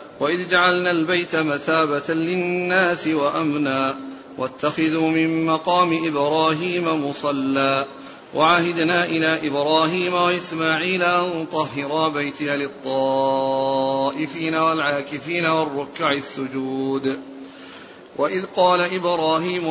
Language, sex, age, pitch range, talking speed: Arabic, male, 40-59, 140-175 Hz, 75 wpm